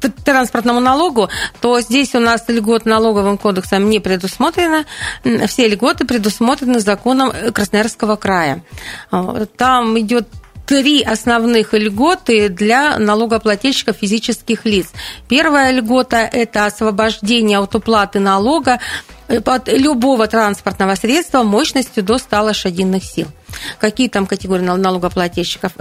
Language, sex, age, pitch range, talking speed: Russian, female, 40-59, 205-245 Hz, 105 wpm